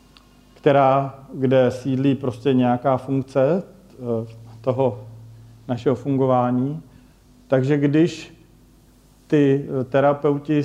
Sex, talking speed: male, 75 wpm